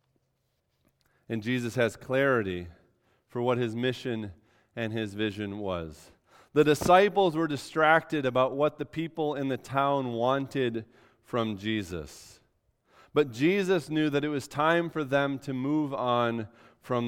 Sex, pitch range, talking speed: male, 120-150 Hz, 135 wpm